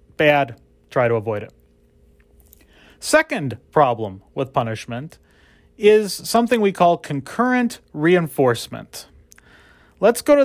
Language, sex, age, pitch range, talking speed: English, male, 30-49, 135-200 Hz, 105 wpm